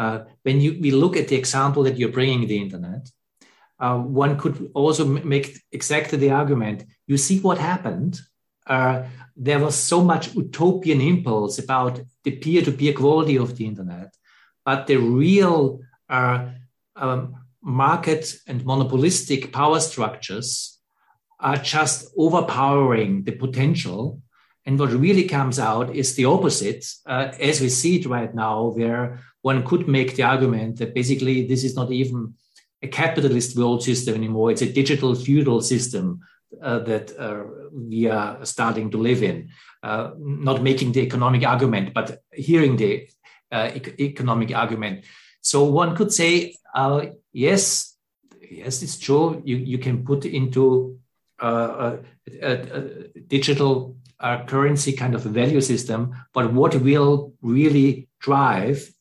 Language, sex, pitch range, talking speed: English, male, 125-145 Hz, 145 wpm